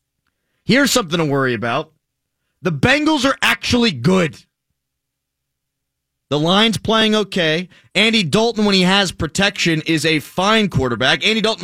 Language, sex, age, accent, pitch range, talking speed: English, male, 30-49, American, 145-210 Hz, 135 wpm